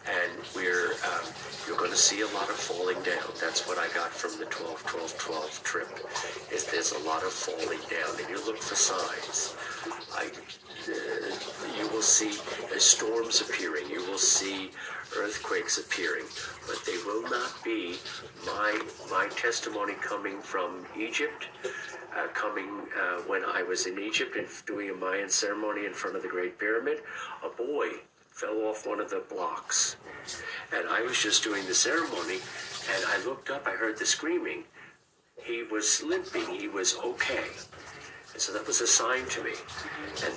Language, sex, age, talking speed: English, male, 50-69, 165 wpm